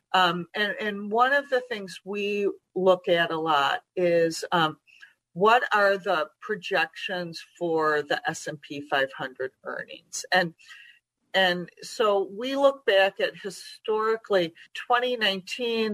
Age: 40-59